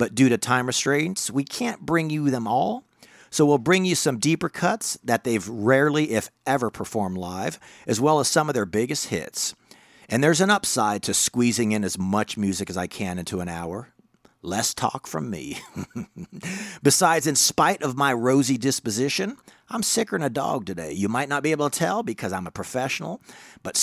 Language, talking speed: English, 195 wpm